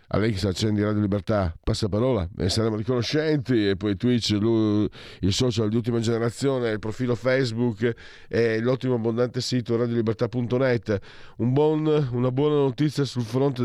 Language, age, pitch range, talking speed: Italian, 50-69, 90-120 Hz, 150 wpm